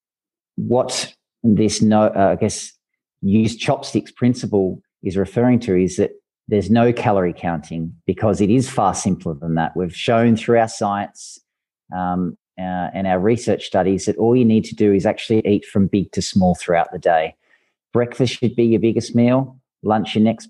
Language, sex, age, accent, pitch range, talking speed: English, male, 40-59, Australian, 95-115 Hz, 180 wpm